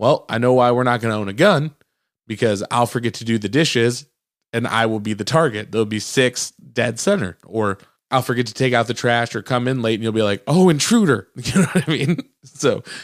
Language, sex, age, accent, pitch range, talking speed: English, male, 20-39, American, 105-135 Hz, 245 wpm